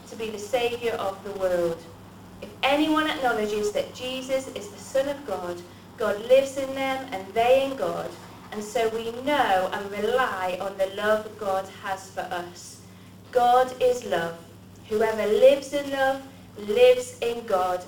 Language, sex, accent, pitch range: English, female, British, 195-275 Hz